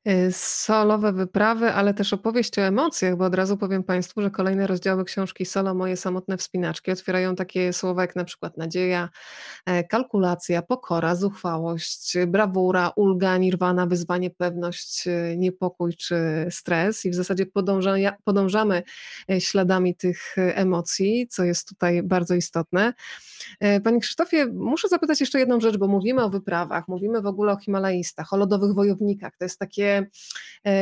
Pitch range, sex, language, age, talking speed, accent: 185-220 Hz, female, Polish, 20-39, 140 wpm, native